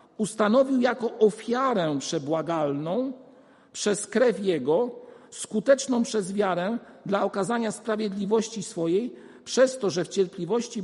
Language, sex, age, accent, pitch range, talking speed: Polish, male, 50-69, native, 180-235 Hz, 105 wpm